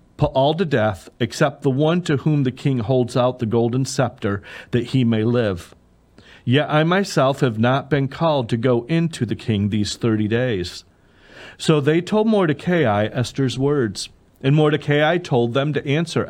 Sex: male